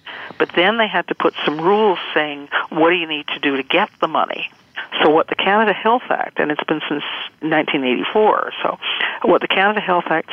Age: 50-69